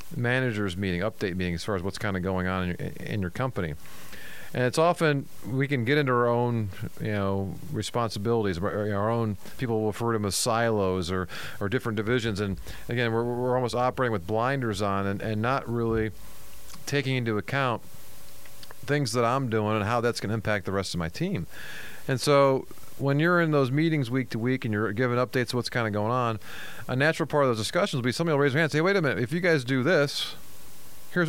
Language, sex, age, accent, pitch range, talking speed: English, male, 40-59, American, 105-135 Hz, 225 wpm